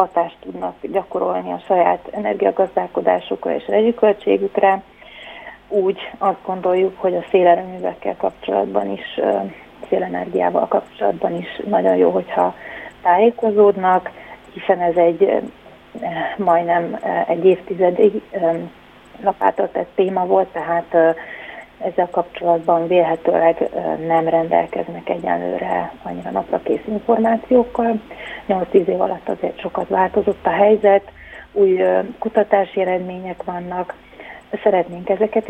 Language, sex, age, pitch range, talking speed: Hungarian, female, 30-49, 175-210 Hz, 100 wpm